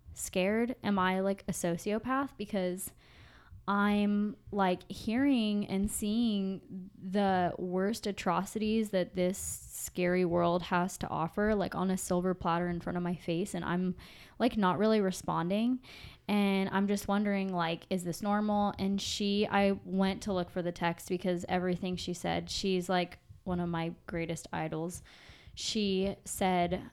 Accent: American